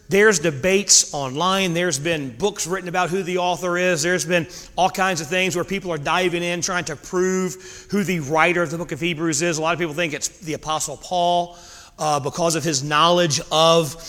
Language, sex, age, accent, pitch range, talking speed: English, male, 30-49, American, 160-185 Hz, 215 wpm